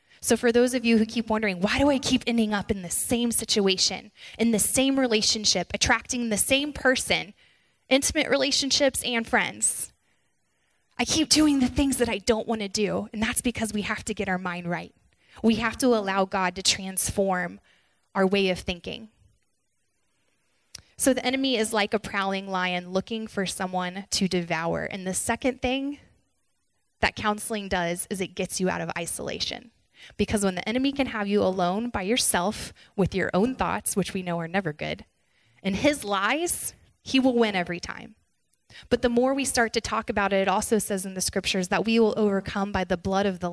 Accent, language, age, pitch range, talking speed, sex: American, English, 10-29, 190-235 Hz, 195 wpm, female